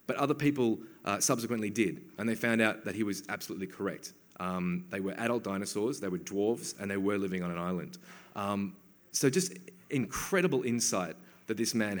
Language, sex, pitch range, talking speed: English, male, 100-130 Hz, 190 wpm